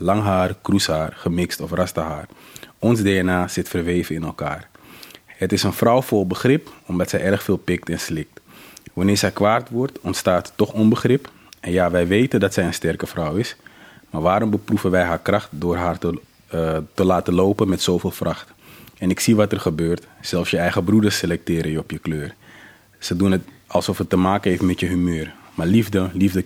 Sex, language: male, Dutch